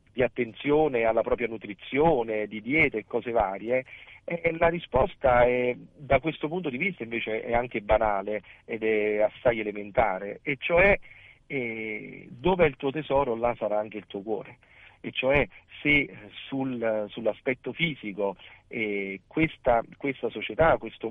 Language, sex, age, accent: Italian, male, 40-59, native